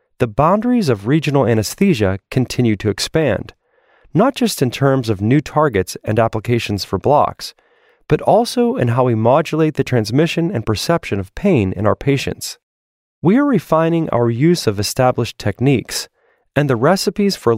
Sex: male